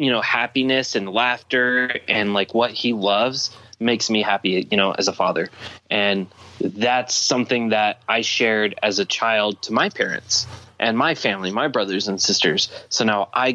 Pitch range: 100-125 Hz